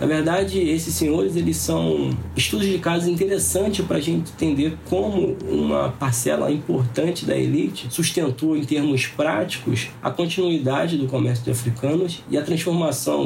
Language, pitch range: Portuguese, 120-155 Hz